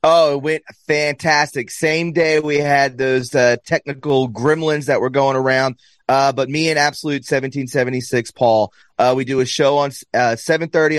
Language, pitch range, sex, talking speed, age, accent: English, 130-160 Hz, male, 170 wpm, 30-49, American